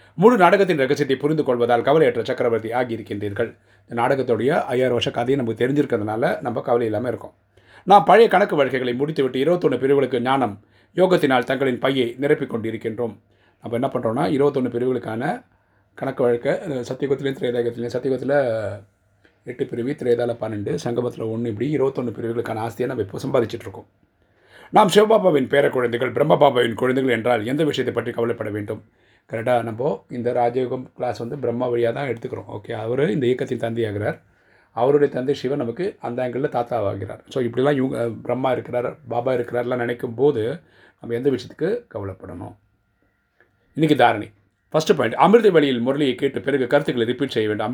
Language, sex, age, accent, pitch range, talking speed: Tamil, male, 30-49, native, 115-135 Hz, 140 wpm